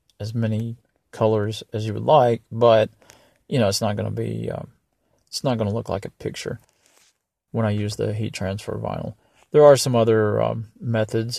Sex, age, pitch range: male, 30-49, 110-120 Hz